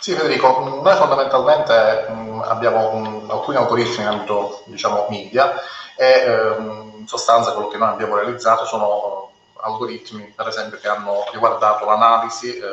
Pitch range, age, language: 100-115 Hz, 30-49, Italian